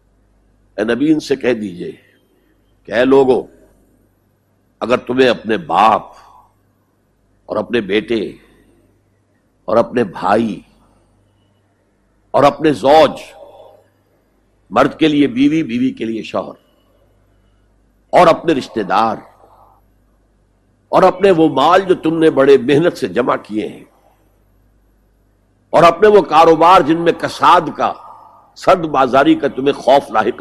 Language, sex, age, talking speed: Urdu, male, 60-79, 115 wpm